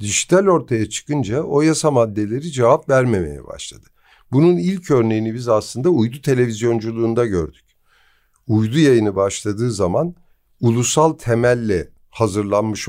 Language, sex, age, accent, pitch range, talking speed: Turkish, male, 50-69, native, 105-140 Hz, 110 wpm